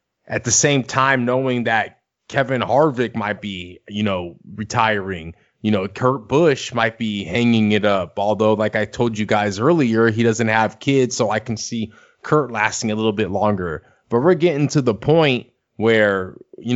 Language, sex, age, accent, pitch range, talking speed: English, male, 20-39, American, 110-130 Hz, 185 wpm